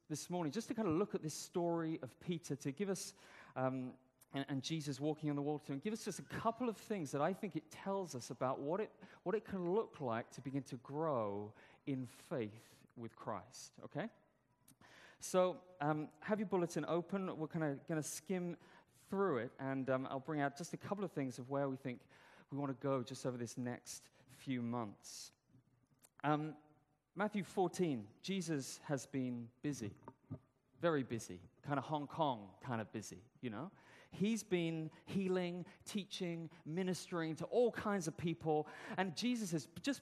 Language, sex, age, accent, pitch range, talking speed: English, male, 30-49, British, 130-180 Hz, 185 wpm